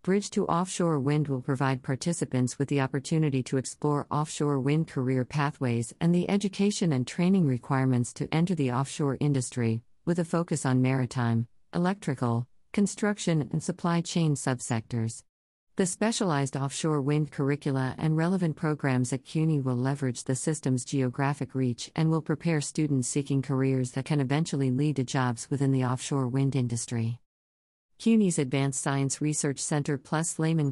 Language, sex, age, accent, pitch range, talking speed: English, female, 50-69, American, 130-160 Hz, 150 wpm